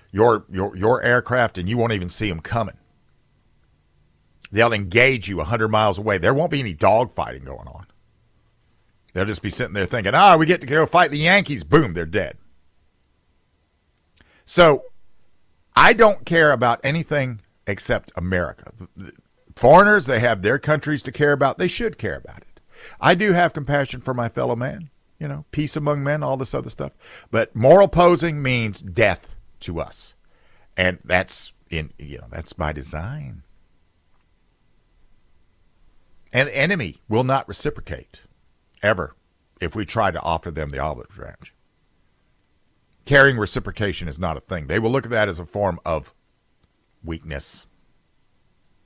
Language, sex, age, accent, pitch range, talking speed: English, male, 50-69, American, 85-135 Hz, 155 wpm